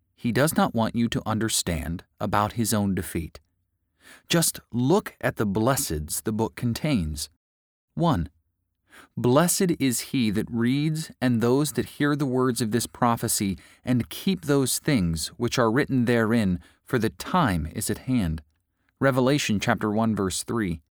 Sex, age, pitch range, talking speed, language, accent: male, 30-49, 85-120 Hz, 145 wpm, English, American